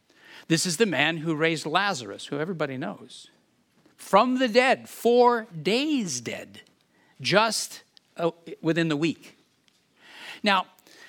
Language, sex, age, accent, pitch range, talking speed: English, male, 60-79, American, 145-200 Hz, 115 wpm